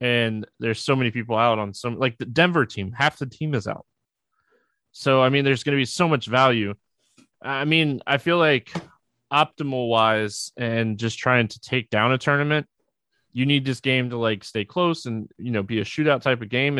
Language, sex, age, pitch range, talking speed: English, male, 20-39, 110-130 Hz, 210 wpm